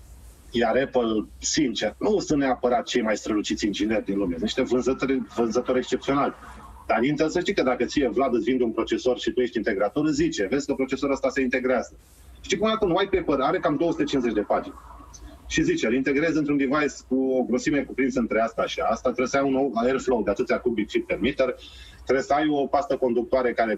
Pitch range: 110-160 Hz